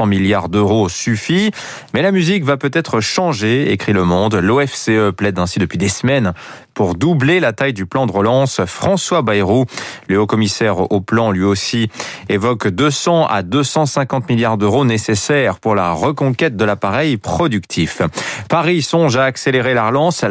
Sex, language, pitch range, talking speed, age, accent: male, French, 105-145 Hz, 155 wpm, 30-49, French